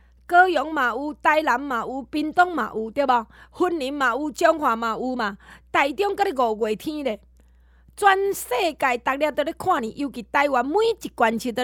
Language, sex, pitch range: Chinese, female, 240-345 Hz